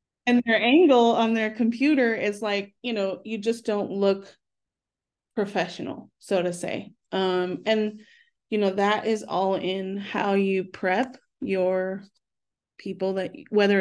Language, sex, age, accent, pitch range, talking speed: English, female, 30-49, American, 185-220 Hz, 145 wpm